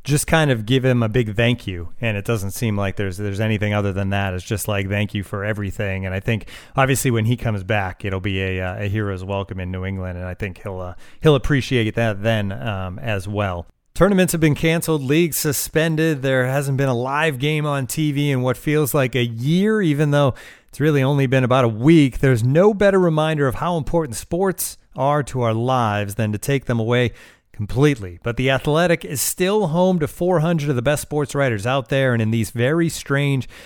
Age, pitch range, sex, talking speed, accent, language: 30-49, 115-155 Hz, male, 220 wpm, American, English